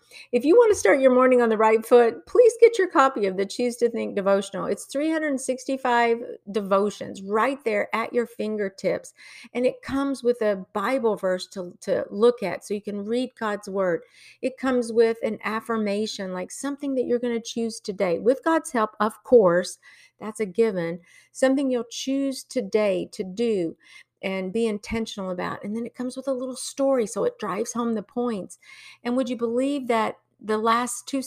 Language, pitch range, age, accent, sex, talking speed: English, 195-250 Hz, 50-69, American, female, 190 wpm